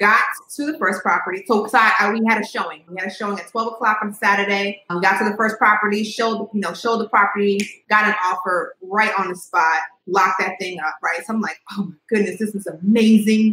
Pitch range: 185-225 Hz